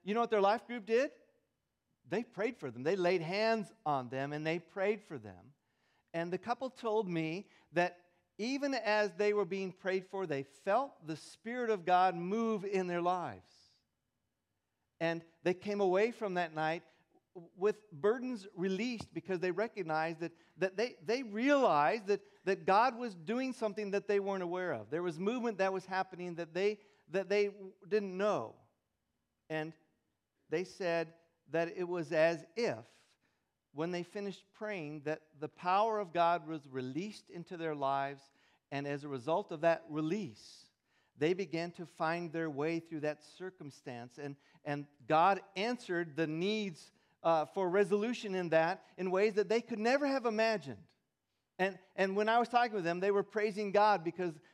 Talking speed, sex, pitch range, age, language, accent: 170 wpm, male, 160-210 Hz, 50-69, English, American